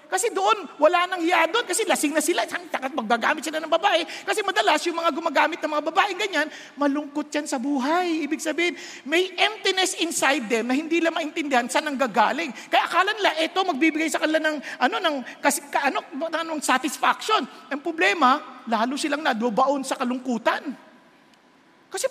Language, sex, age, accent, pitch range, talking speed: English, male, 50-69, Filipino, 270-345 Hz, 175 wpm